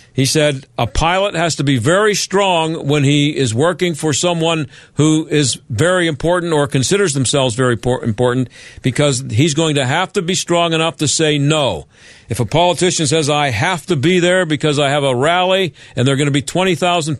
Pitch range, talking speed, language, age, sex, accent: 130-165 Hz, 200 wpm, English, 50-69, male, American